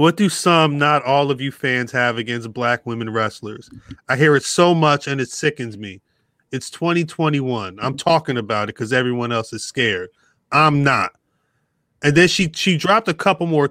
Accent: American